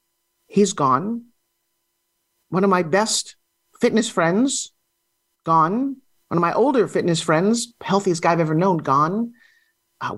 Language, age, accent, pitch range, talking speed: English, 40-59, American, 180-240 Hz, 130 wpm